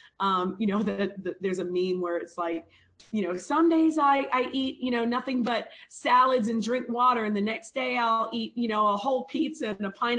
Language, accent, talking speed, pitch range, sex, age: English, American, 225 wpm, 190-250 Hz, female, 40-59